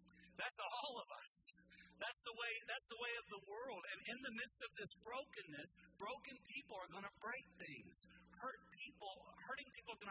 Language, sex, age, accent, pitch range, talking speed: English, male, 50-69, American, 150-225 Hz, 185 wpm